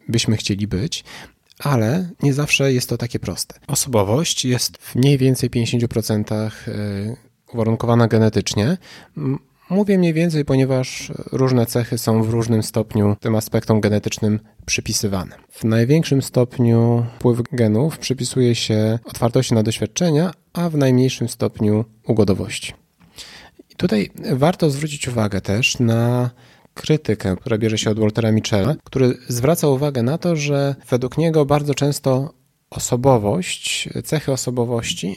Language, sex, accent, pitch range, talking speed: Polish, male, native, 115-140 Hz, 125 wpm